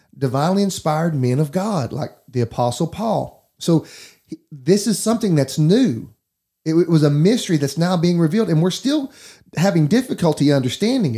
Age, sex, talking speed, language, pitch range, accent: 30-49, male, 155 wpm, English, 140-175 Hz, American